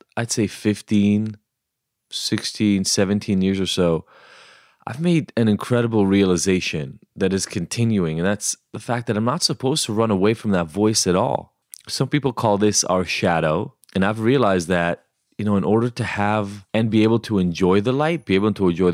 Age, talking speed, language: 20-39, 185 wpm, English